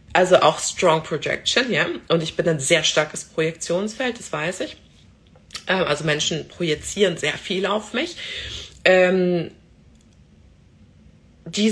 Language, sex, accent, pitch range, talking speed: German, female, German, 155-195 Hz, 120 wpm